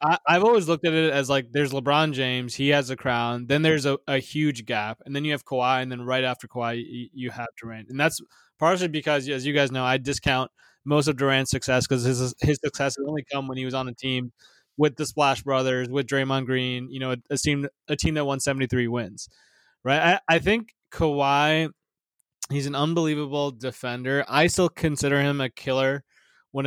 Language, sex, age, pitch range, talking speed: English, male, 20-39, 130-155 Hz, 215 wpm